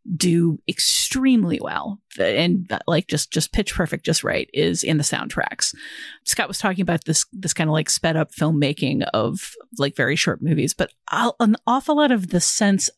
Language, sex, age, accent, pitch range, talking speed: English, female, 30-49, American, 160-195 Hz, 185 wpm